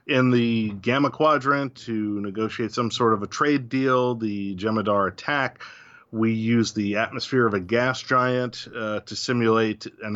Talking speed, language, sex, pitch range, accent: 160 wpm, English, male, 105-125 Hz, American